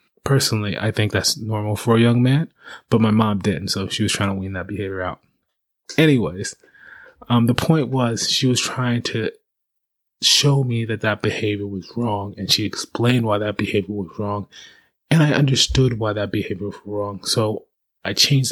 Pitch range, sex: 105-120 Hz, male